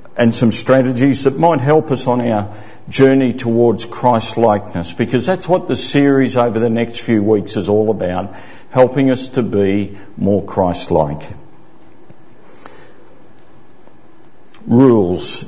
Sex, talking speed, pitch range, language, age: male, 125 wpm, 100-125 Hz, English, 50-69